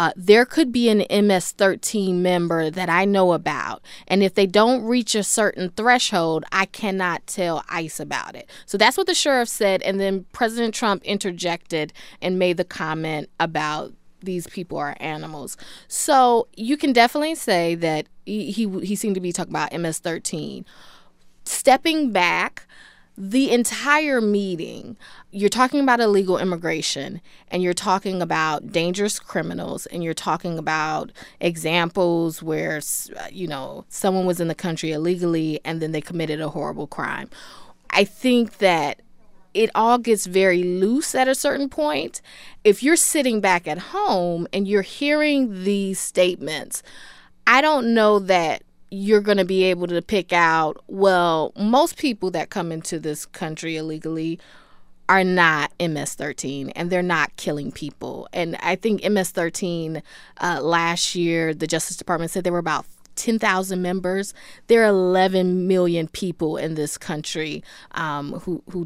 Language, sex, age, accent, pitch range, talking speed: English, female, 20-39, American, 165-210 Hz, 150 wpm